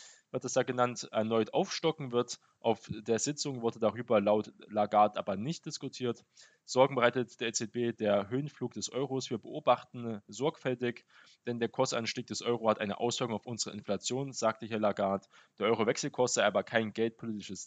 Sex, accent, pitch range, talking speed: male, German, 105-125 Hz, 165 wpm